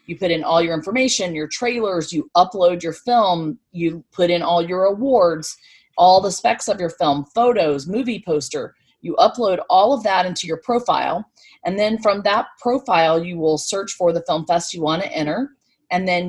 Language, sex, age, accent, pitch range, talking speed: English, female, 40-59, American, 160-200 Hz, 195 wpm